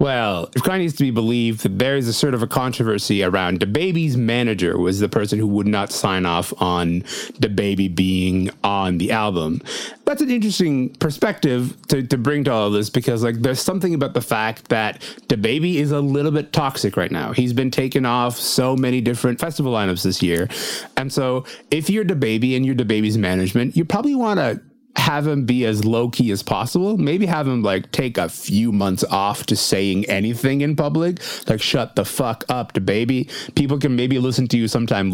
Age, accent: 30-49, American